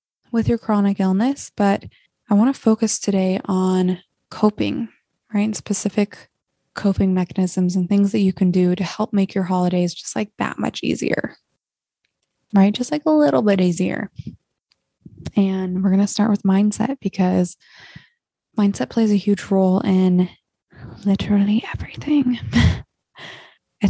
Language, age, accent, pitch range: English, 20-39, American, 185-210 Hz